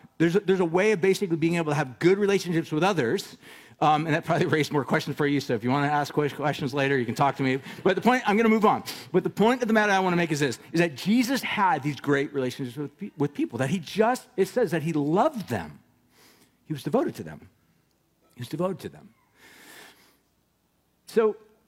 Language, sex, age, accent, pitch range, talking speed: English, male, 50-69, American, 120-175 Hz, 240 wpm